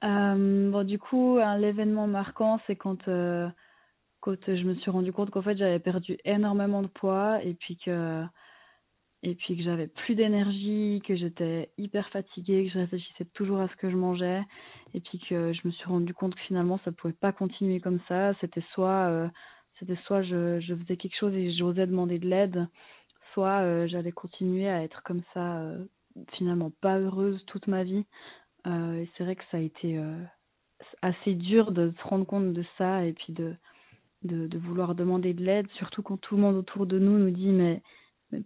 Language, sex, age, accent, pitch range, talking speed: French, female, 20-39, French, 180-200 Hz, 200 wpm